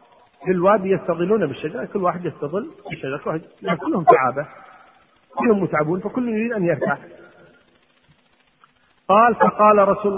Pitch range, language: 150-195 Hz, Arabic